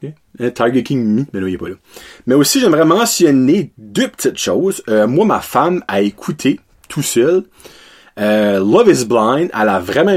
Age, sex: 30-49, male